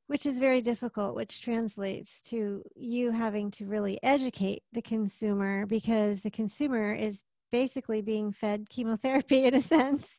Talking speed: 145 wpm